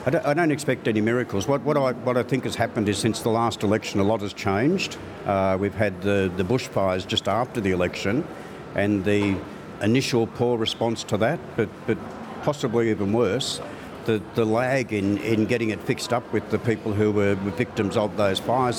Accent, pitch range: Australian, 105-120 Hz